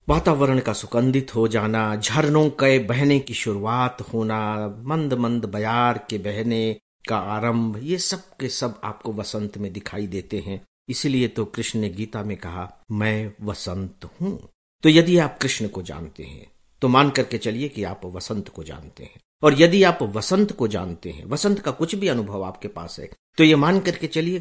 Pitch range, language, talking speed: 105-150 Hz, English, 150 wpm